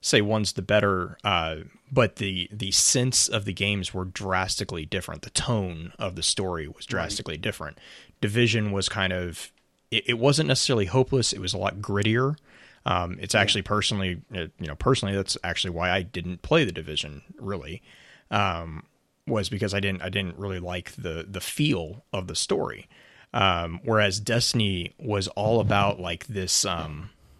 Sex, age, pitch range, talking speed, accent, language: male, 30-49, 90-115 Hz, 170 wpm, American, English